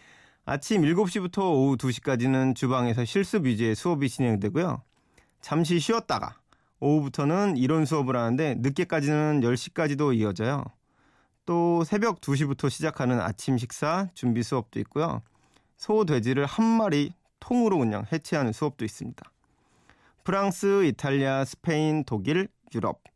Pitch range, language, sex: 125-170 Hz, Korean, male